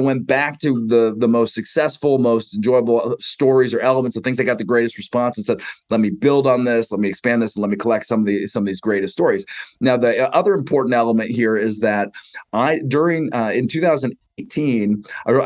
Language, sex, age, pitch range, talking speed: English, male, 30-49, 115-145 Hz, 215 wpm